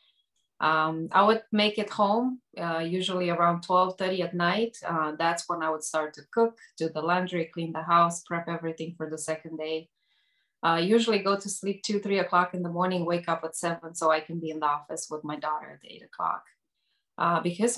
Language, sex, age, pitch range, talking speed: English, female, 20-39, 165-190 Hz, 210 wpm